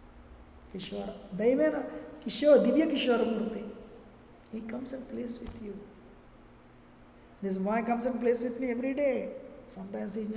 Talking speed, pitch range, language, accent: 115 wpm, 210-260 Hz, English, Indian